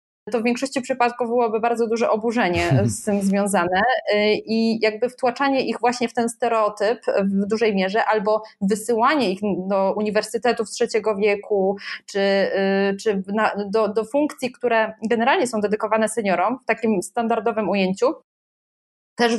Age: 20-39